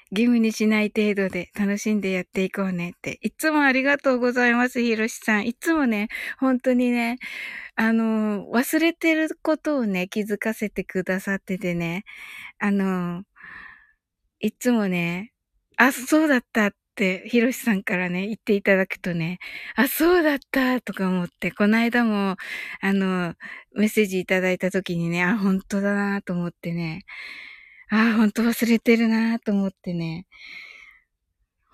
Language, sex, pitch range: Japanese, female, 185-230 Hz